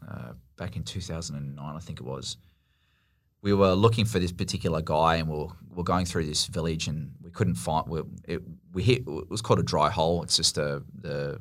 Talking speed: 220 wpm